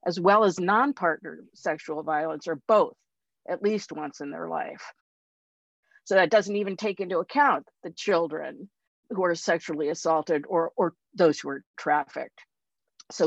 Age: 50-69